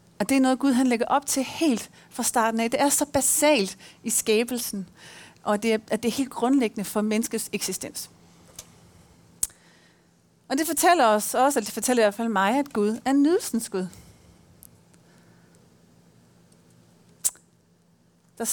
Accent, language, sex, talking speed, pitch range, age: native, Danish, female, 150 wpm, 200-260 Hz, 40-59